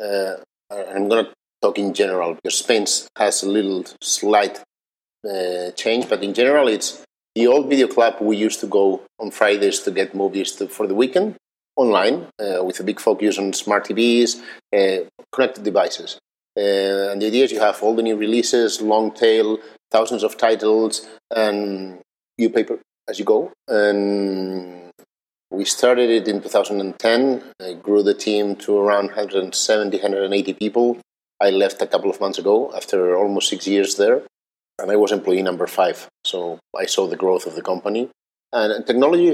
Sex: male